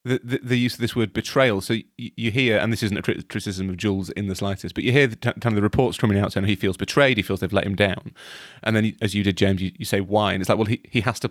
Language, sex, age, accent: English, male, 30-49, British